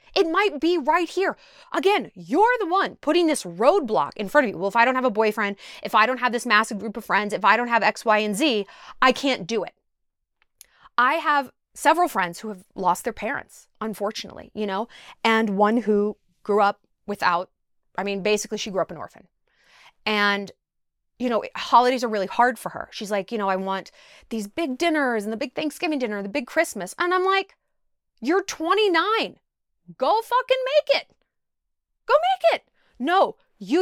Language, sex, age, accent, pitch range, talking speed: English, female, 20-39, American, 210-325 Hz, 195 wpm